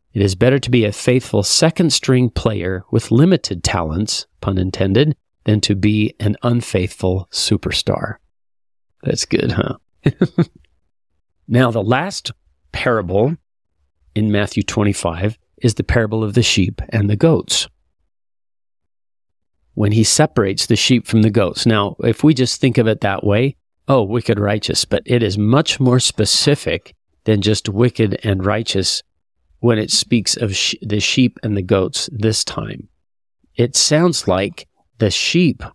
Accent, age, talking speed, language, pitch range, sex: American, 40-59, 145 wpm, English, 100-125 Hz, male